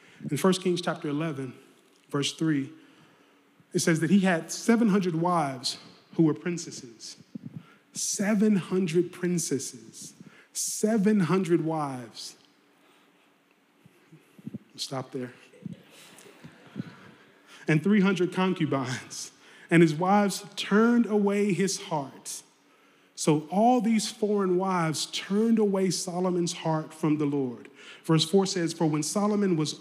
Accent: American